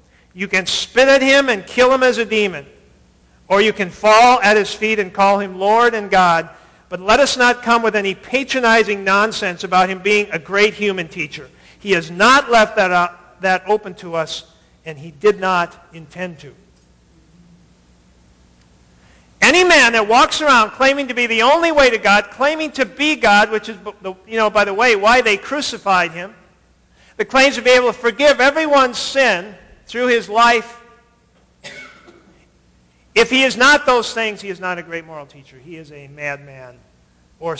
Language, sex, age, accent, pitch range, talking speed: English, male, 50-69, American, 150-235 Hz, 180 wpm